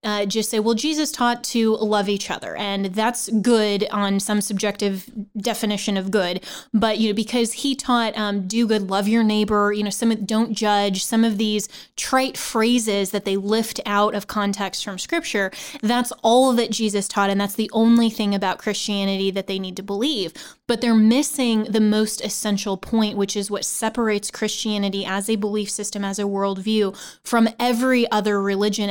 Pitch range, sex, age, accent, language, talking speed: 200-230 Hz, female, 20-39, American, English, 185 wpm